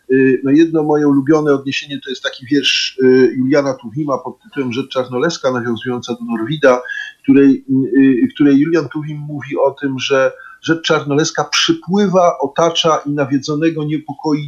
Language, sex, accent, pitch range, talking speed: Polish, male, native, 135-170 Hz, 135 wpm